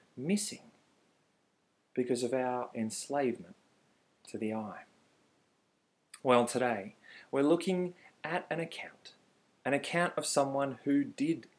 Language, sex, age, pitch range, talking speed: English, male, 30-49, 125-185 Hz, 110 wpm